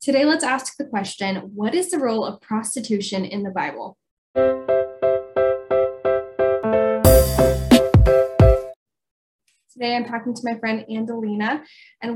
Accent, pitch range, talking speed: American, 195-275 Hz, 110 wpm